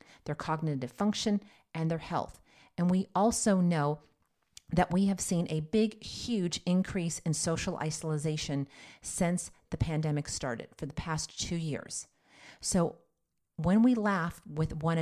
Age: 40-59